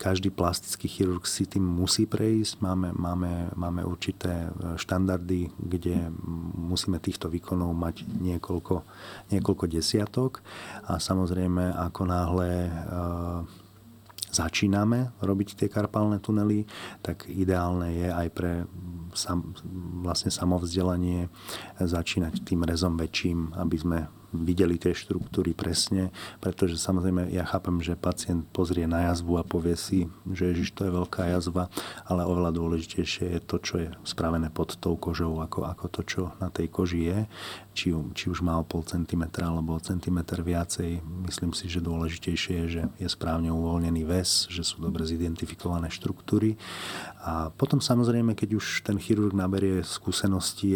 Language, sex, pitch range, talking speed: Slovak, male, 85-95 Hz, 140 wpm